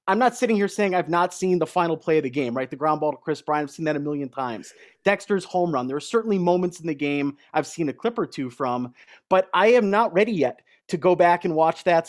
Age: 30-49